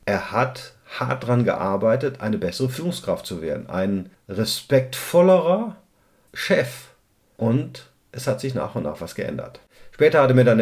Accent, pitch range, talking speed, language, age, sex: German, 105-130 Hz, 155 wpm, German, 50-69, male